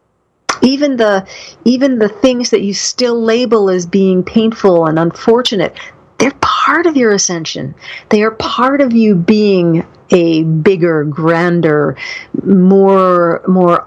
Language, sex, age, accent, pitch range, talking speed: English, female, 50-69, American, 175-215 Hz, 130 wpm